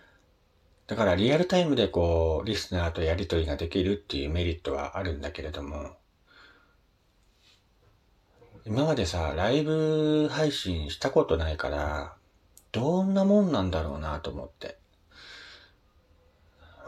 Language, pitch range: Japanese, 80-105 Hz